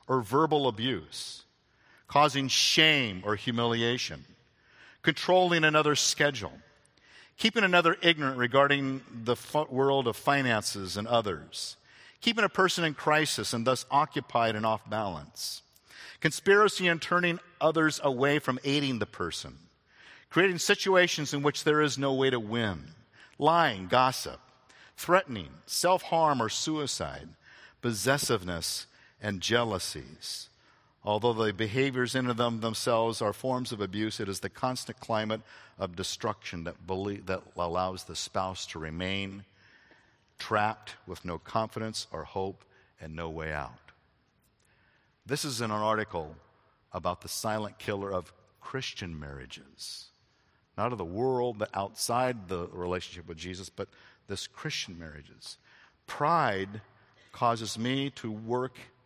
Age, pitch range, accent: 50-69, 100-140 Hz, American